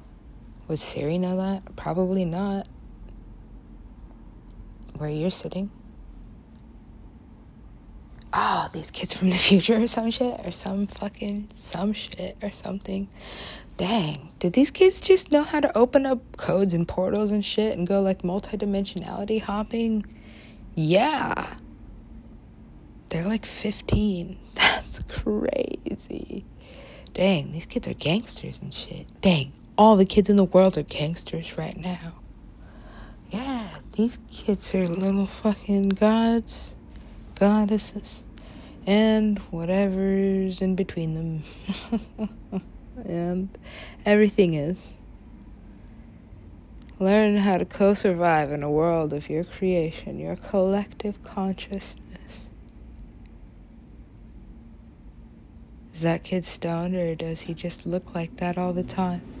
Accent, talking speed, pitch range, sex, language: American, 115 wpm, 170-210 Hz, female, English